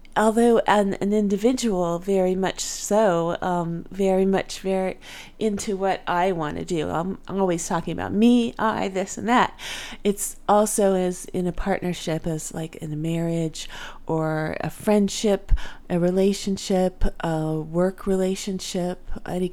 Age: 40-59